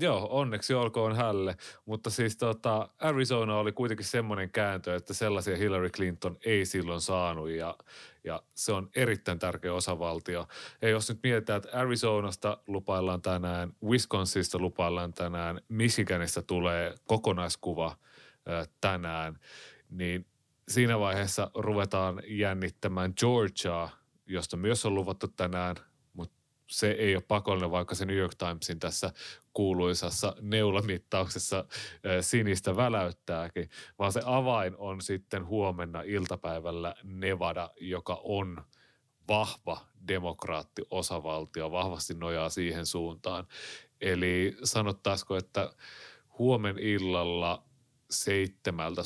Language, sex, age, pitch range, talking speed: Finnish, male, 30-49, 90-105 Hz, 110 wpm